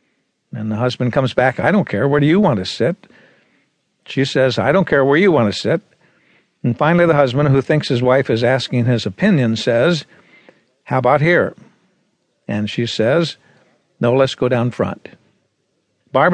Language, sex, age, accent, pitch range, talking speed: English, male, 60-79, American, 120-145 Hz, 180 wpm